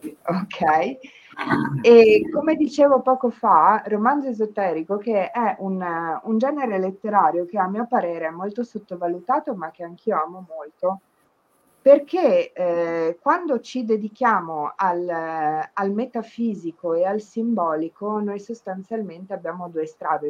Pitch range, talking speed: 160-220 Hz, 125 wpm